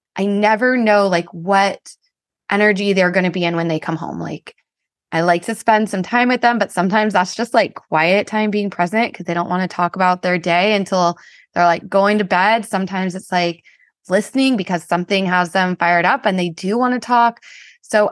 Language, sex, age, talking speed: English, female, 20-39, 215 wpm